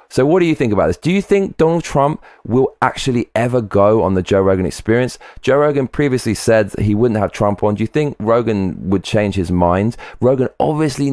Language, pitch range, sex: English, 85-115 Hz, male